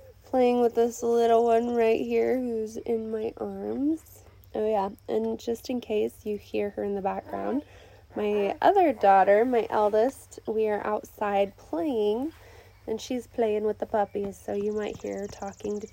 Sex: female